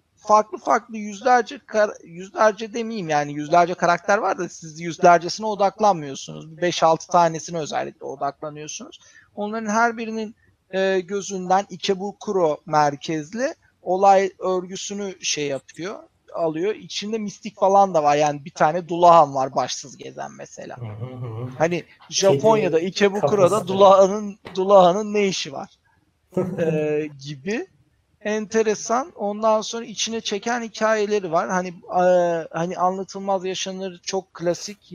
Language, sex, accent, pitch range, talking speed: Turkish, male, native, 160-200 Hz, 115 wpm